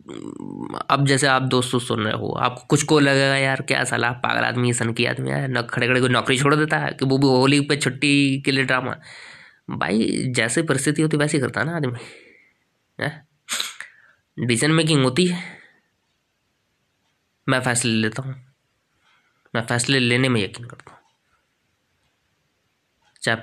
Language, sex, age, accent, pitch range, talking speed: Hindi, male, 20-39, native, 120-145 Hz, 160 wpm